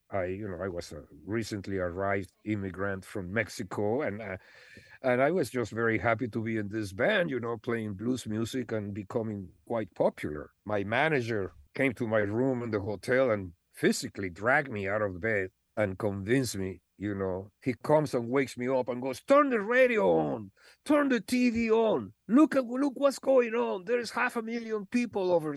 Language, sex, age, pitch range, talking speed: English, male, 50-69, 110-155 Hz, 190 wpm